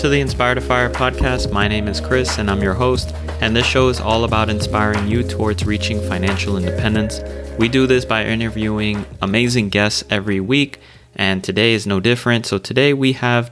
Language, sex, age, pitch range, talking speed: English, male, 30-49, 95-120 Hz, 190 wpm